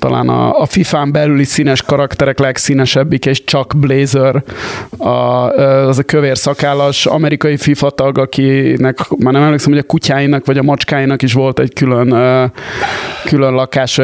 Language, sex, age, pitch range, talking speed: Hungarian, male, 30-49, 125-140 Hz, 150 wpm